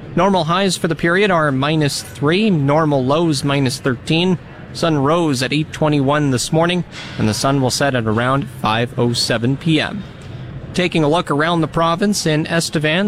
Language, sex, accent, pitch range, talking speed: English, male, American, 130-160 Hz, 160 wpm